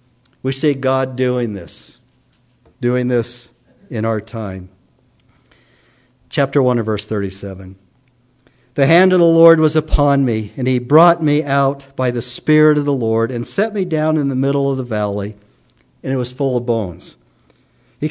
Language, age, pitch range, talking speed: English, 60-79, 120-155 Hz, 170 wpm